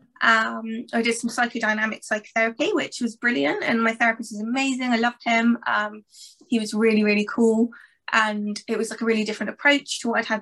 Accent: British